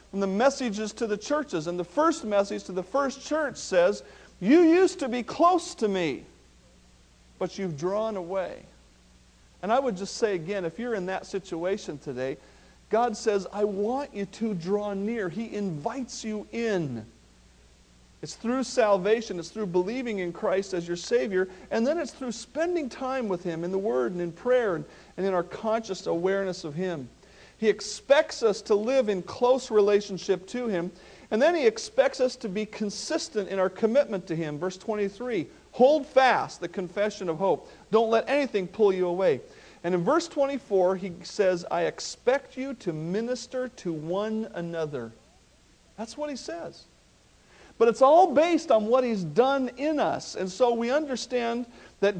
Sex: male